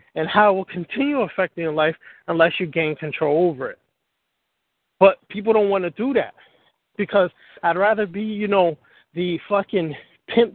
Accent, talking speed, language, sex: American, 170 wpm, English, male